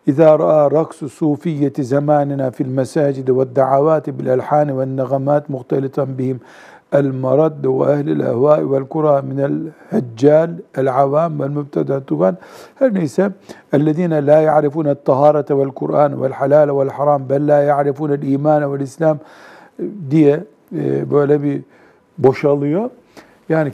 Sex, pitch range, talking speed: male, 135-155 Hz, 95 wpm